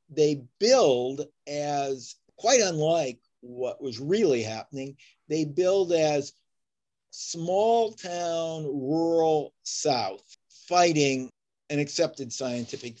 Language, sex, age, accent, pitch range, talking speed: English, male, 50-69, American, 140-170 Hz, 90 wpm